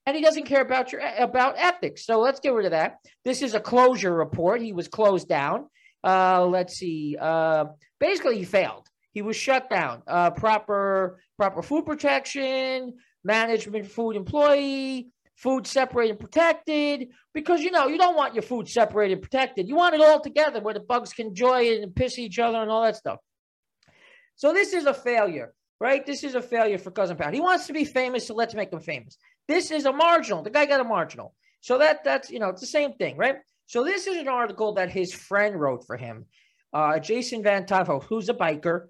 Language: English